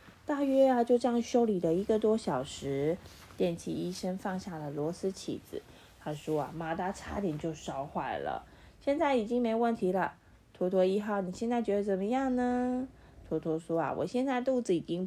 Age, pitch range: 20-39, 165-230 Hz